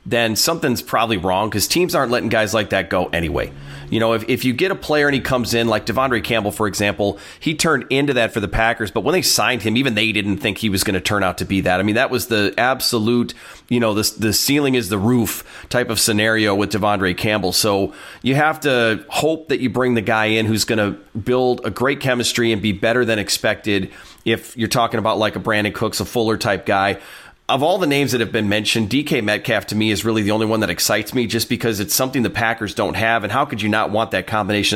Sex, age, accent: male, 30-49, American